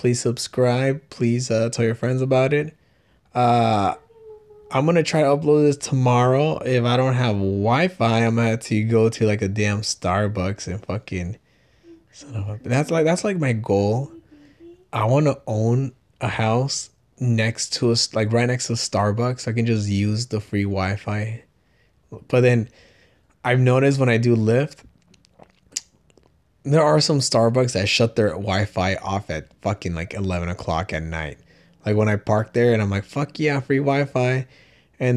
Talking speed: 165 wpm